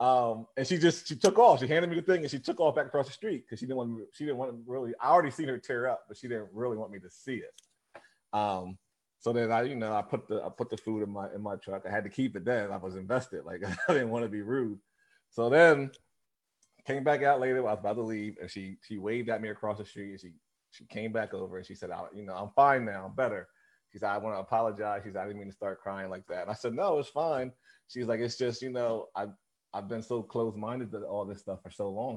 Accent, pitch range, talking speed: American, 100-130 Hz, 295 wpm